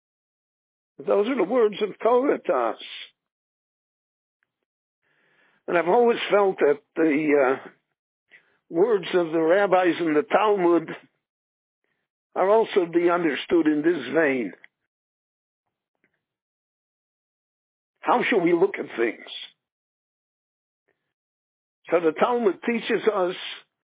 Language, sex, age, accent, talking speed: English, male, 60-79, American, 100 wpm